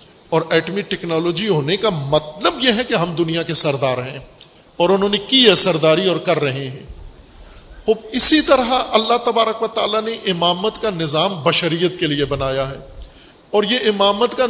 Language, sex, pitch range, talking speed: Urdu, male, 155-220 Hz, 180 wpm